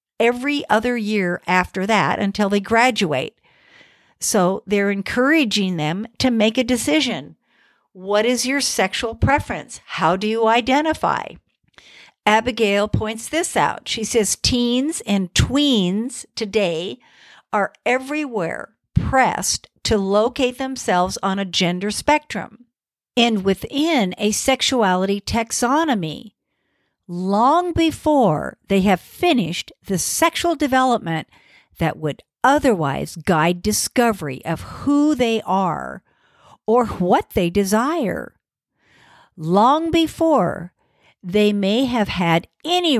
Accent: American